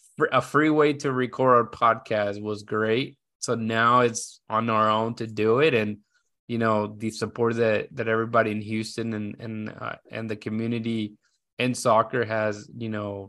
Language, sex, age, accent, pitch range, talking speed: English, male, 20-39, American, 110-130 Hz, 175 wpm